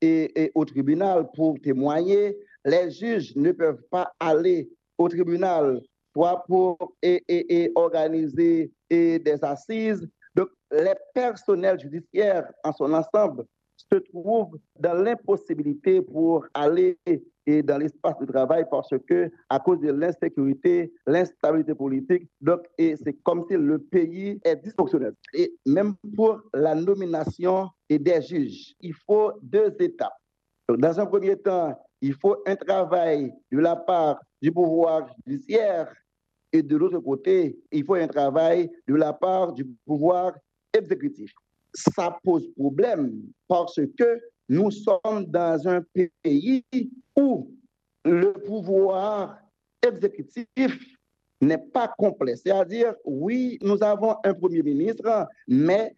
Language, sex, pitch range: French, male, 170-265 Hz